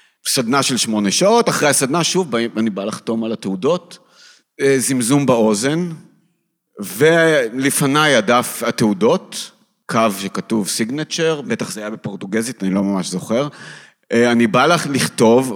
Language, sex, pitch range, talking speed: Hebrew, male, 105-150 Hz, 125 wpm